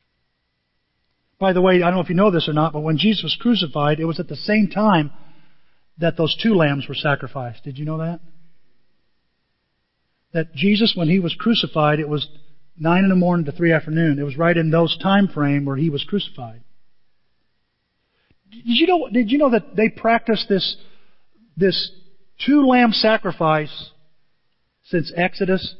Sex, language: male, English